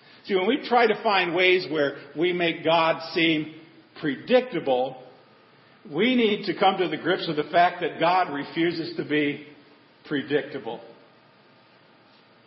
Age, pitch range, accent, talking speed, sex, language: 50-69, 145-190 Hz, American, 140 wpm, male, English